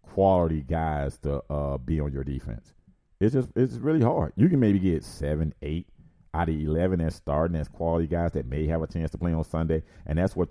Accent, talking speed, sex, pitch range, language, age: American, 225 wpm, male, 80-105 Hz, English, 40-59